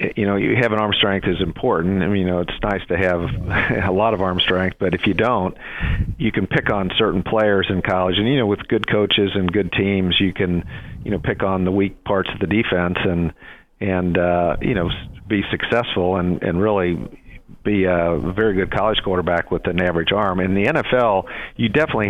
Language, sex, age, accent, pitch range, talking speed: English, male, 50-69, American, 90-105 Hz, 215 wpm